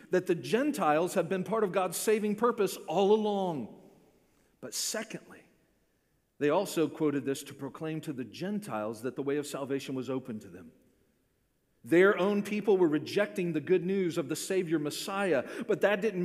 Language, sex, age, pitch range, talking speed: English, male, 40-59, 140-190 Hz, 175 wpm